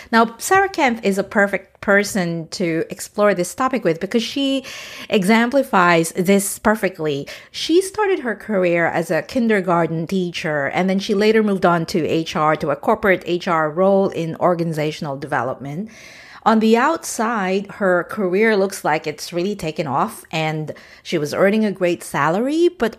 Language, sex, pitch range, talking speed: English, female, 175-230 Hz, 155 wpm